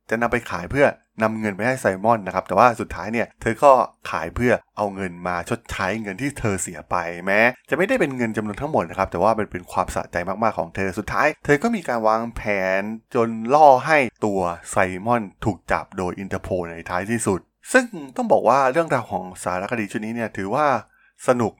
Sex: male